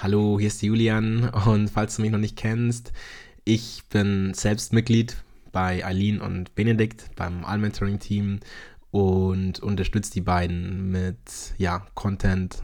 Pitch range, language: 95-110 Hz, German